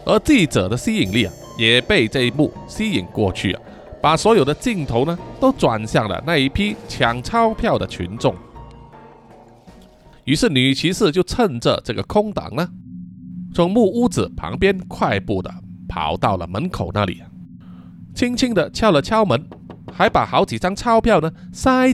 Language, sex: Chinese, male